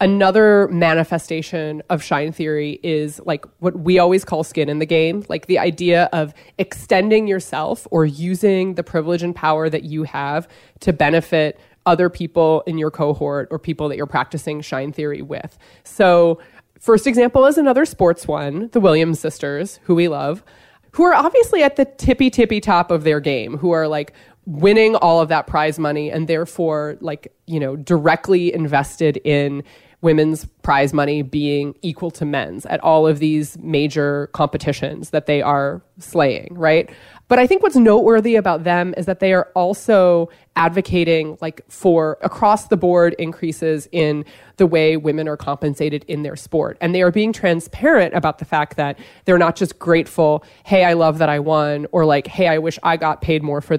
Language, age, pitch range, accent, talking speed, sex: English, 20-39, 150-180 Hz, American, 180 wpm, female